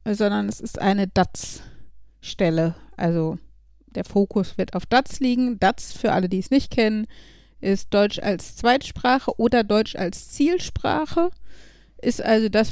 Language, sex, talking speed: German, female, 140 wpm